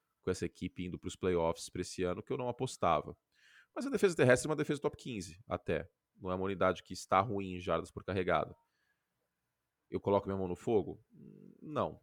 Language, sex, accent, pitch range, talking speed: Portuguese, male, Brazilian, 90-115 Hz, 210 wpm